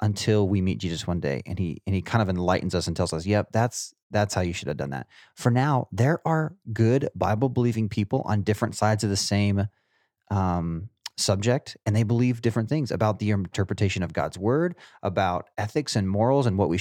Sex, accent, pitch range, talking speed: male, American, 90-110 Hz, 210 wpm